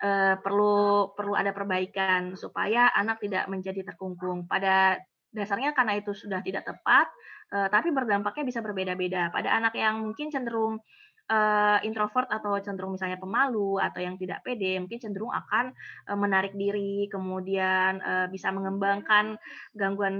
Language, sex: Indonesian, female